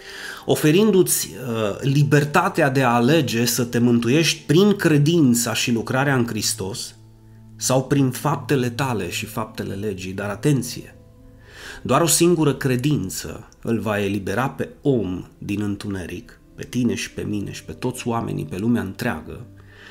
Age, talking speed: 30-49, 140 wpm